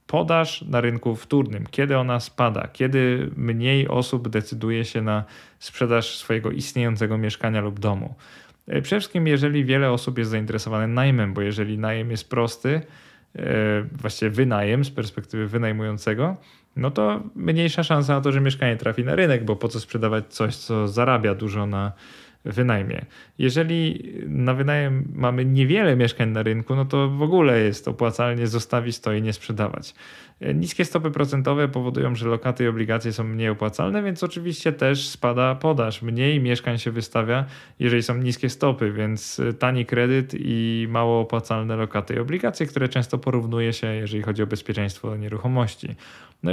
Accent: native